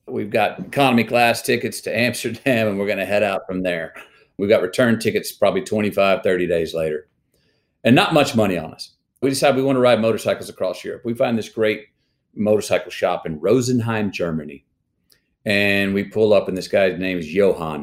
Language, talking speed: English, 195 wpm